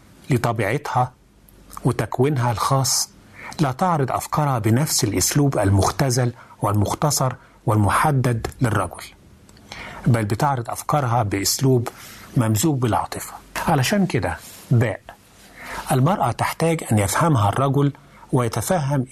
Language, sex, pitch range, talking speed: Arabic, male, 105-140 Hz, 85 wpm